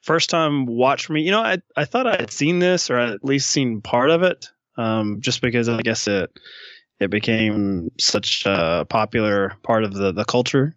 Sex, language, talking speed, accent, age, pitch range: male, English, 205 wpm, American, 20-39, 105-140 Hz